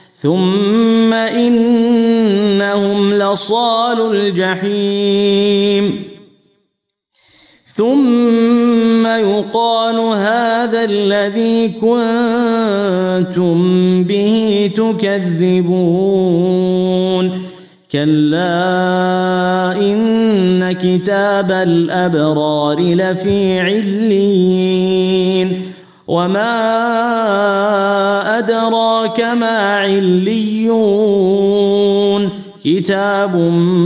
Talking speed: 40 wpm